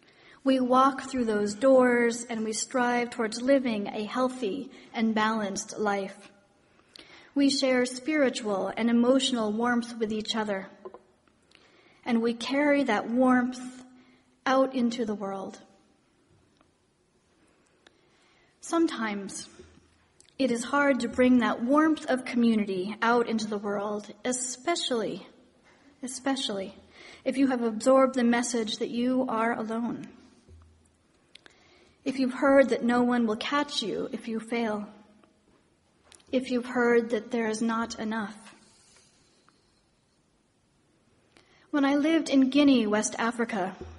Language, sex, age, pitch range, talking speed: English, female, 40-59, 220-260 Hz, 115 wpm